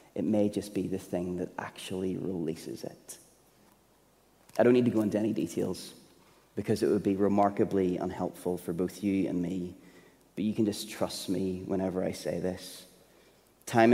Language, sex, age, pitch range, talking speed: English, male, 30-49, 95-110 Hz, 170 wpm